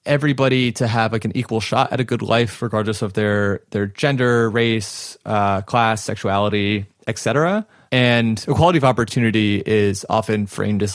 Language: English